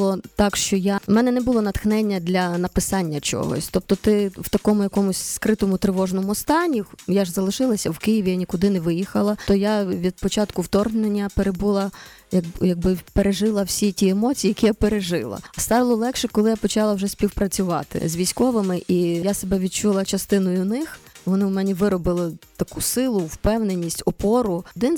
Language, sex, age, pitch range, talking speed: Ukrainian, female, 20-39, 185-215 Hz, 160 wpm